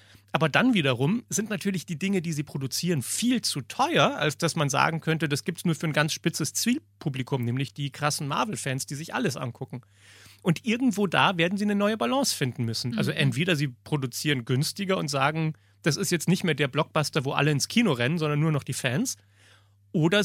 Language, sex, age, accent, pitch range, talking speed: German, male, 30-49, German, 140-185 Hz, 205 wpm